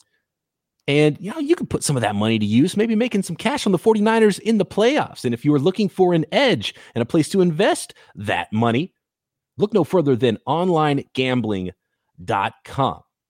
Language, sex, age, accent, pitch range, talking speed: English, male, 30-49, American, 115-170 Hz, 190 wpm